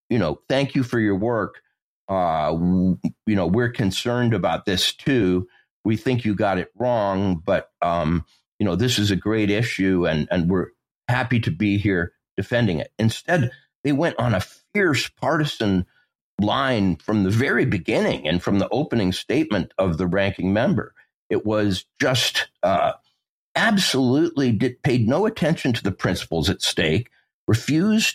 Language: English